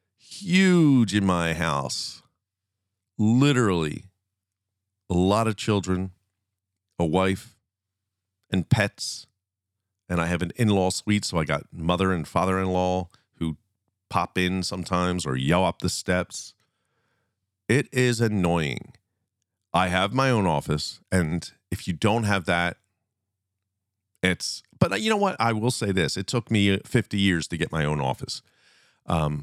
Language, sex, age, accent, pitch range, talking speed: English, male, 40-59, American, 90-110 Hz, 145 wpm